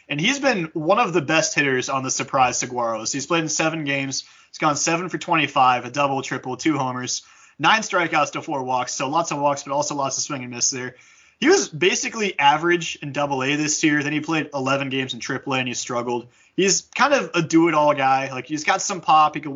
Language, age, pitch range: English, 20-39, 130-170 Hz